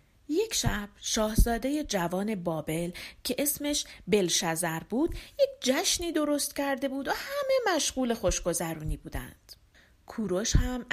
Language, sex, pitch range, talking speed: Persian, female, 190-275 Hz, 115 wpm